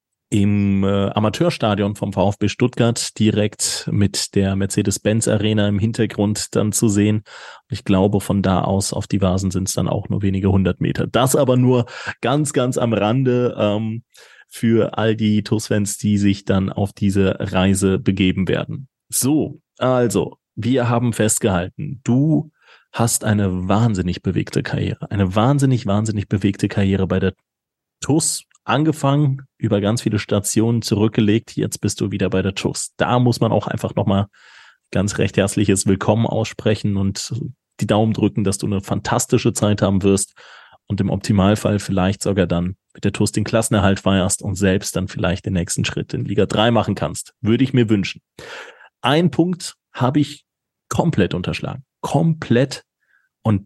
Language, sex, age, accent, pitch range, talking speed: German, male, 30-49, German, 100-120 Hz, 160 wpm